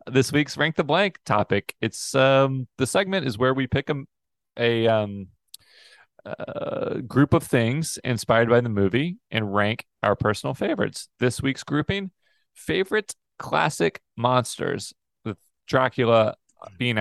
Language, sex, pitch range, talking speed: English, male, 95-125 Hz, 140 wpm